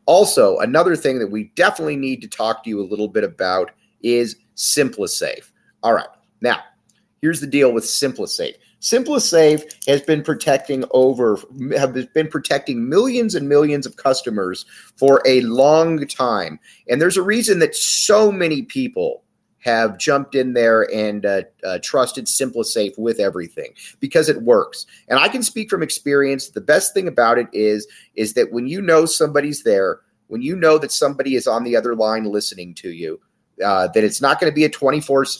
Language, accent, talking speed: English, American, 180 wpm